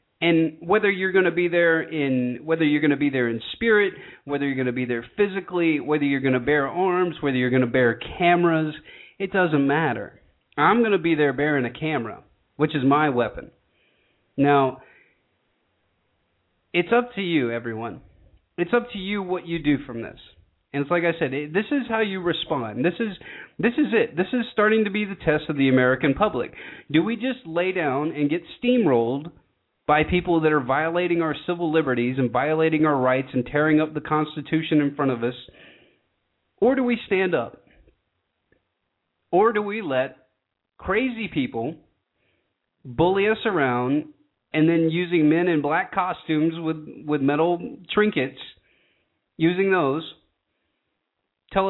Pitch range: 135-180 Hz